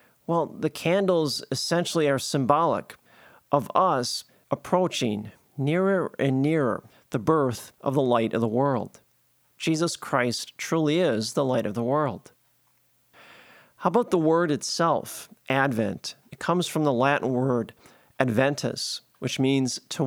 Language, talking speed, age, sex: English, 135 wpm, 40-59, male